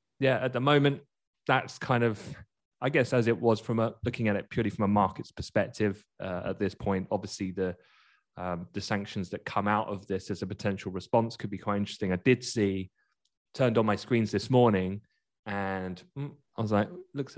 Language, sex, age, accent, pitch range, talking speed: English, male, 20-39, British, 95-115 Hz, 200 wpm